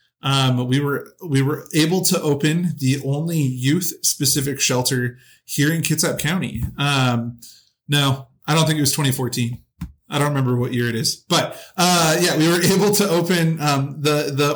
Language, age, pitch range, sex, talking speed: English, 30-49, 125-150 Hz, male, 175 wpm